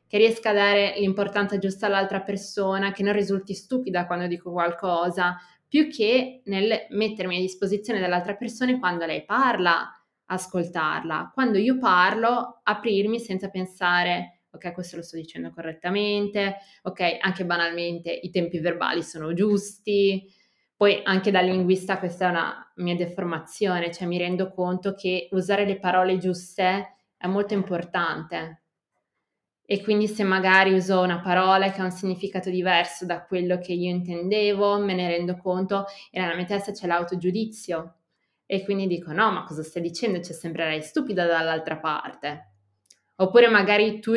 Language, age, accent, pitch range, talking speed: Italian, 20-39, native, 175-200 Hz, 150 wpm